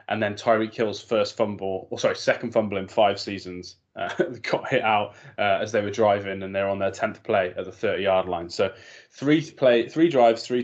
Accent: British